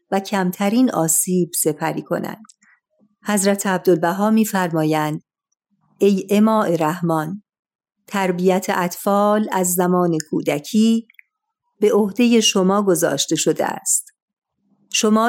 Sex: female